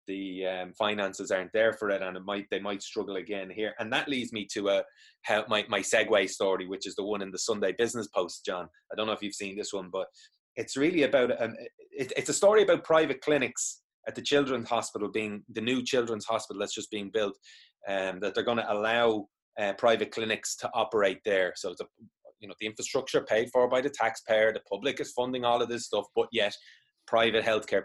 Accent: Irish